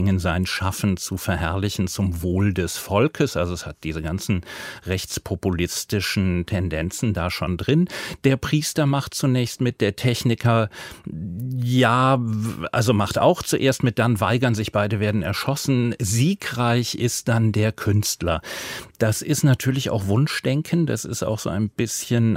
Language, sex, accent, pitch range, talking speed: German, male, German, 95-120 Hz, 140 wpm